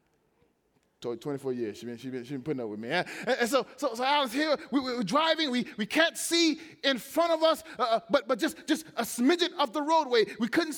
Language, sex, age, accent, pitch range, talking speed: English, male, 30-49, American, 250-320 Hz, 245 wpm